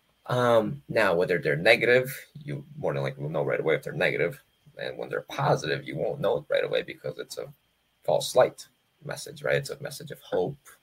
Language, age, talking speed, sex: English, 20-39, 210 wpm, male